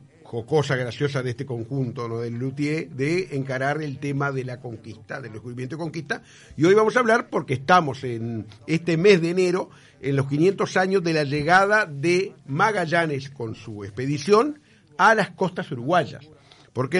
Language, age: Spanish, 50-69